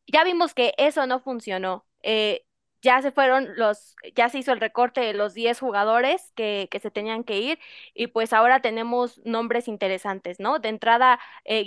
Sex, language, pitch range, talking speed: female, Spanish, 220-255 Hz, 185 wpm